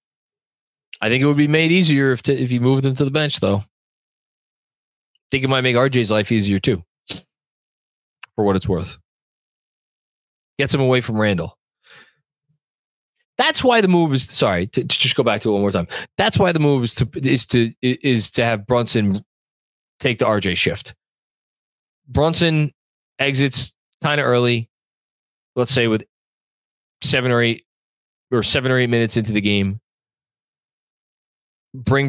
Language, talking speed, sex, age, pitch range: English, 160 wpm, male, 20-39, 110-140 Hz